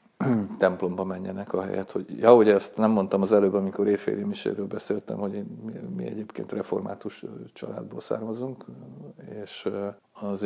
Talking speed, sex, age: 145 wpm, male, 50-69